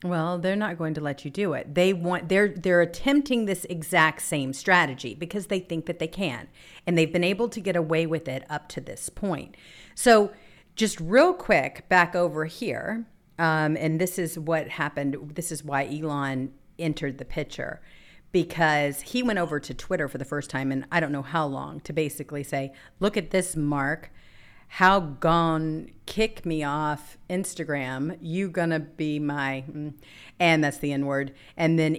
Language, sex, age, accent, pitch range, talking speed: English, female, 50-69, American, 145-185 Hz, 180 wpm